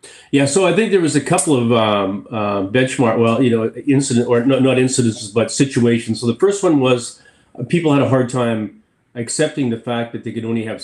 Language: English